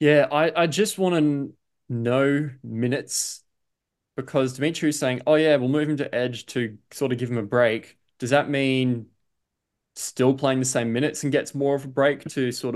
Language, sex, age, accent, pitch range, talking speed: English, male, 20-39, Australian, 115-135 Hz, 200 wpm